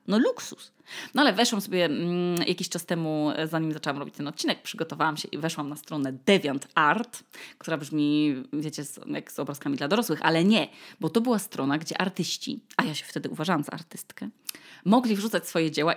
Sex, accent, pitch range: female, native, 155-200 Hz